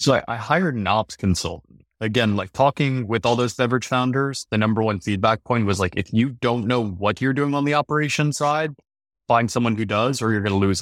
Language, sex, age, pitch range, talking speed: English, male, 20-39, 95-120 Hz, 235 wpm